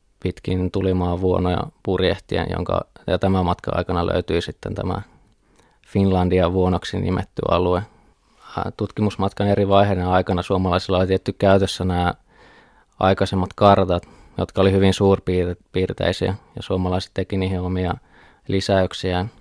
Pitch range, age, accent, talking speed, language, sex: 90-95 Hz, 20-39, native, 115 wpm, Finnish, male